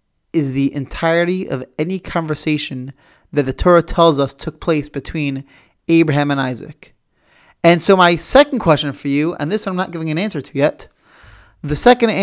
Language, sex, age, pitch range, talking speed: English, male, 30-49, 145-220 Hz, 175 wpm